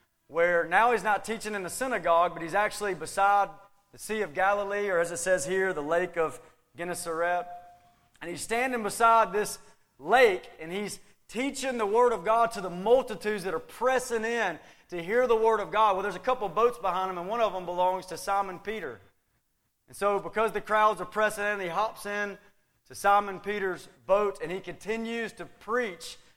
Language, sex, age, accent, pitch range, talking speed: English, male, 30-49, American, 175-225 Hz, 200 wpm